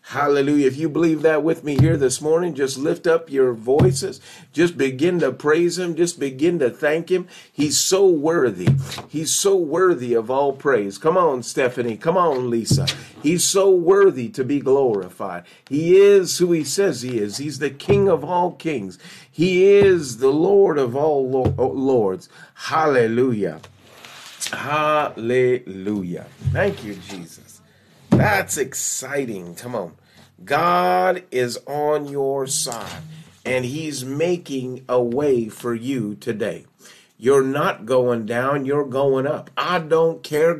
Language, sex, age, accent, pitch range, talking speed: English, male, 40-59, American, 130-170 Hz, 145 wpm